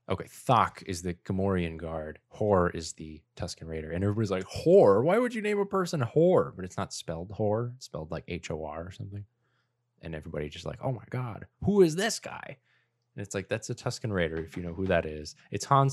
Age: 20-39